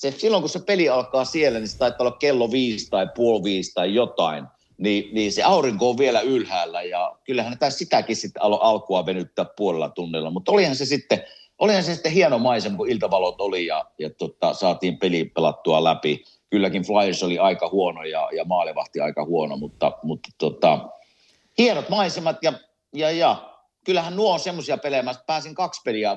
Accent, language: native, Finnish